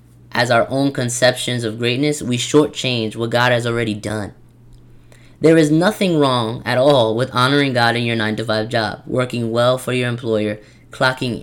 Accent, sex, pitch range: American, female, 110-135 Hz